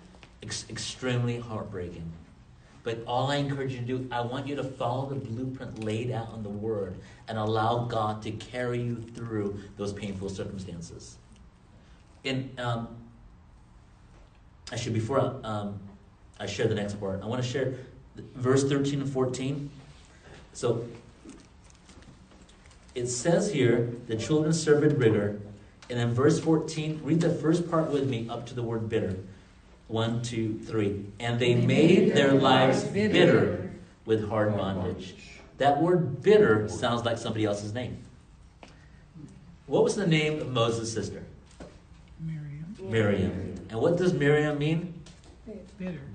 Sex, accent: male, American